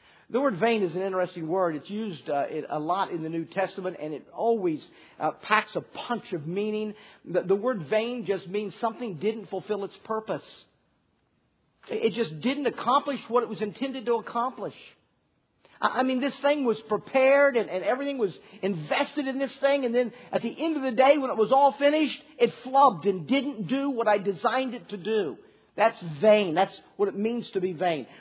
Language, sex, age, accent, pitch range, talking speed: English, male, 50-69, American, 190-255 Hz, 200 wpm